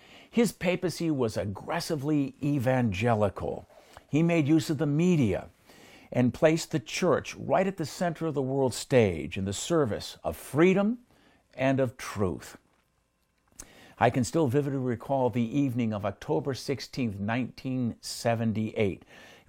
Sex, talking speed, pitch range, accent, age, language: male, 130 wpm, 110-150 Hz, American, 50-69, English